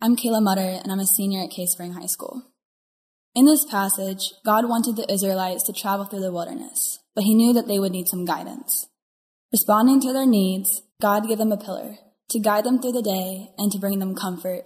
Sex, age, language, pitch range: female, 10-29, English, 190-230 Hz